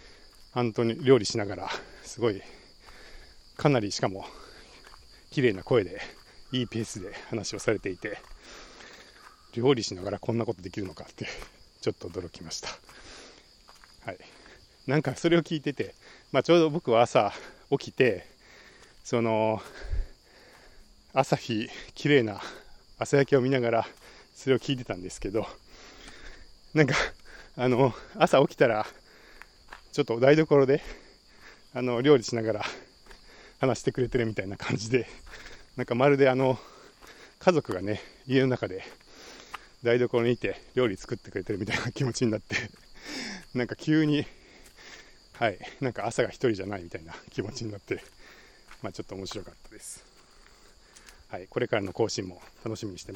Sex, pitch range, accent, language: male, 110-140 Hz, native, Japanese